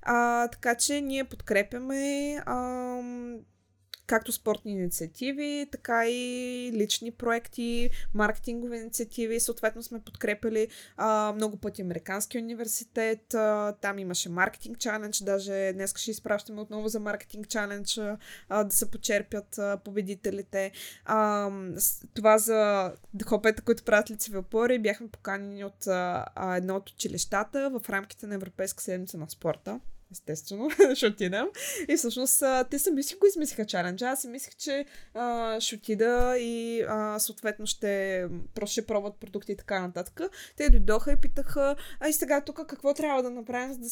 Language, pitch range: Bulgarian, 205-245 Hz